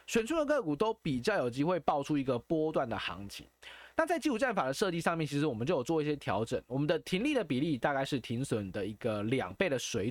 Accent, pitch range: native, 130-190 Hz